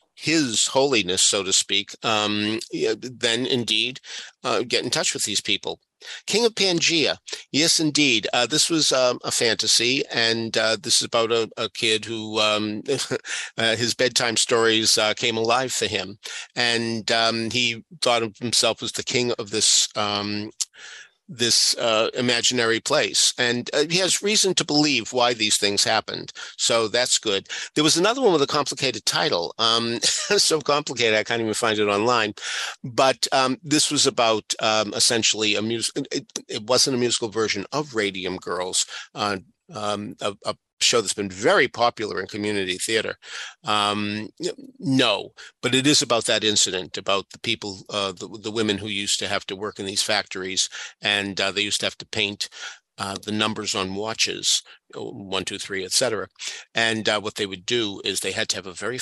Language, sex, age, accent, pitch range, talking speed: English, male, 50-69, American, 105-125 Hz, 180 wpm